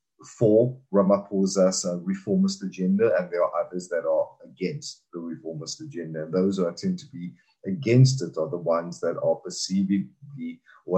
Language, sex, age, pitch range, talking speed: English, male, 30-49, 85-130 Hz, 165 wpm